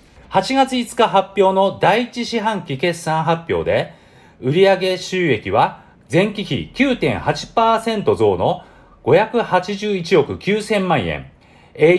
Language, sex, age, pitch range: Japanese, male, 40-59, 160-220 Hz